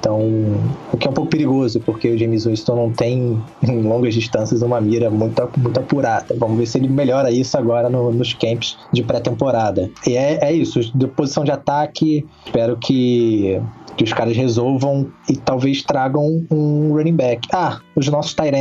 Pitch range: 115-135 Hz